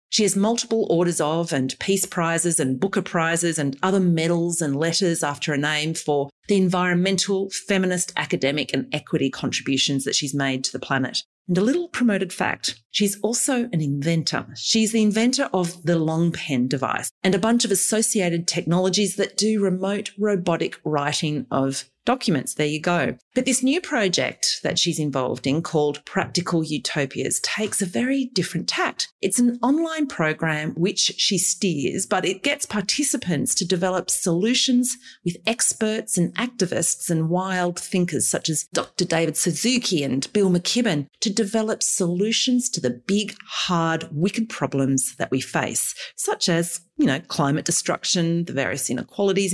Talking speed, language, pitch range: 160 wpm, English, 150-210 Hz